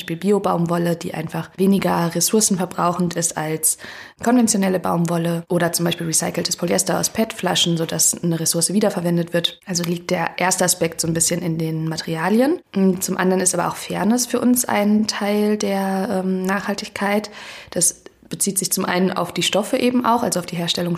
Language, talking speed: German, 170 wpm